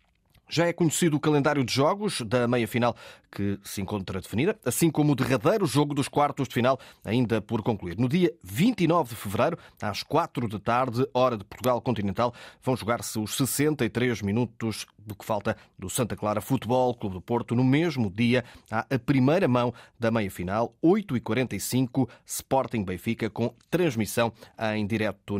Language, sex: Portuguese, male